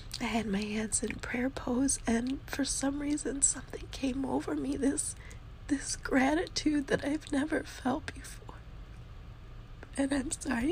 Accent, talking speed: American, 145 wpm